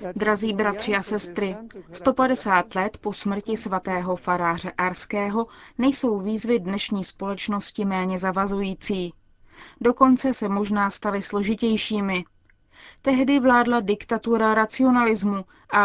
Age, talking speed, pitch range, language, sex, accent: 20-39, 100 wpm, 200-240 Hz, Czech, female, native